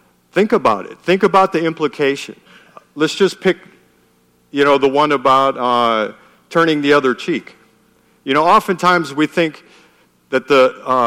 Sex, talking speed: male, 150 wpm